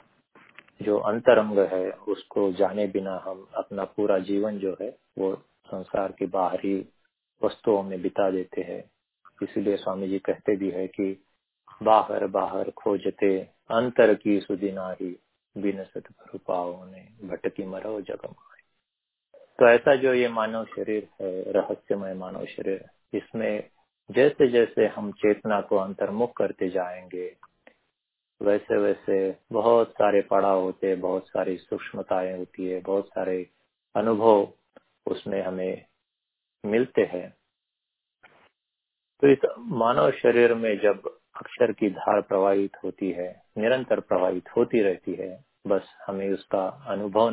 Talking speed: 125 wpm